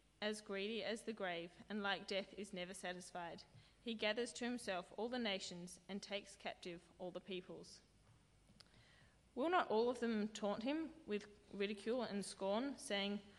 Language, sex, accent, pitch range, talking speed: English, female, Australian, 185-230 Hz, 160 wpm